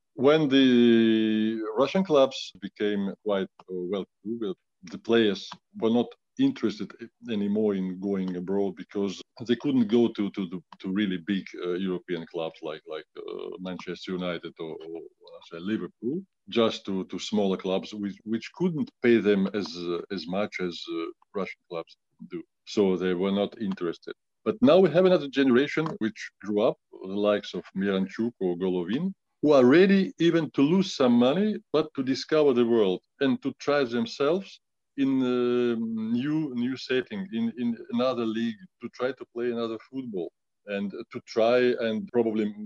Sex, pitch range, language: male, 100-170 Hz, English